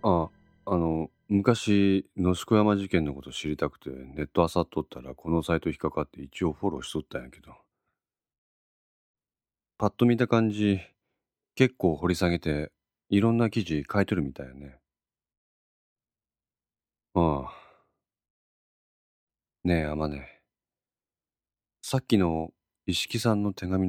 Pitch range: 75-105 Hz